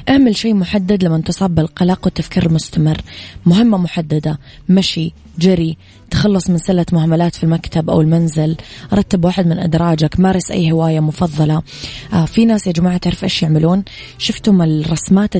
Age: 20-39